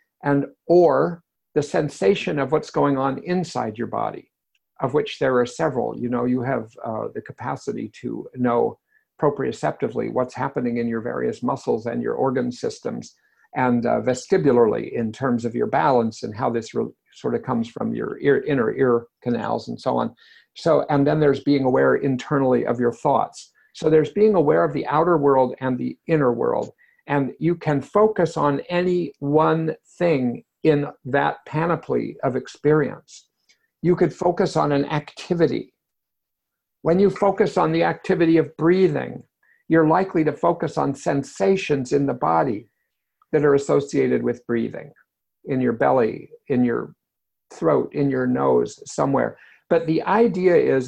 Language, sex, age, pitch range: English, male, 50-69, 130-170 Hz